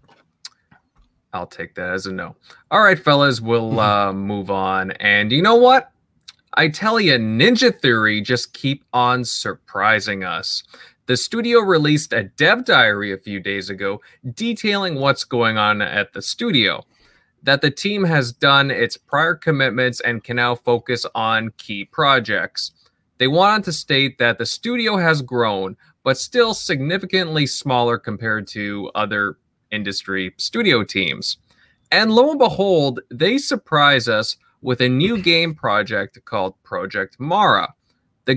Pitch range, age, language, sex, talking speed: 115-170 Hz, 20-39, English, male, 145 wpm